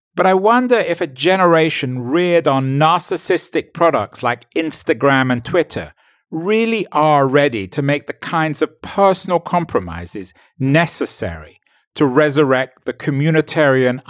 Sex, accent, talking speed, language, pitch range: male, British, 125 wpm, English, 125-170 Hz